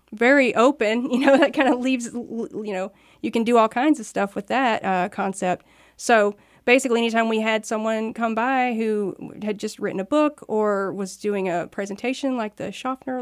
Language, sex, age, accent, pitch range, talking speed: English, female, 40-59, American, 195-235 Hz, 195 wpm